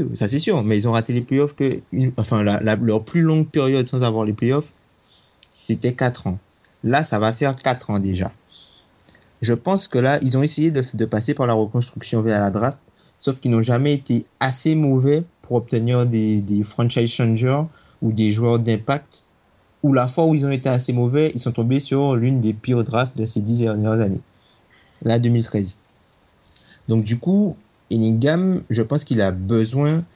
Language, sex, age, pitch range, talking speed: French, male, 30-49, 110-135 Hz, 195 wpm